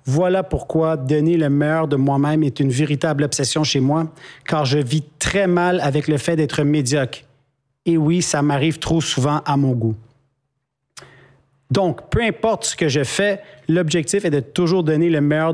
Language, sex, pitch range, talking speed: French, male, 140-165 Hz, 180 wpm